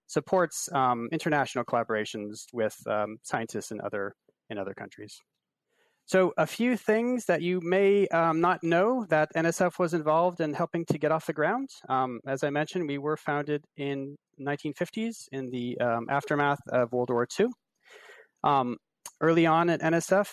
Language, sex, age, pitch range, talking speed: English, male, 30-49, 120-170 Hz, 160 wpm